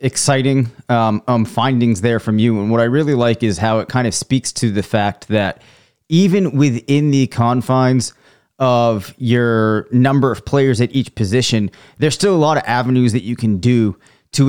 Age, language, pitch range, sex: 30-49, English, 115-135 Hz, male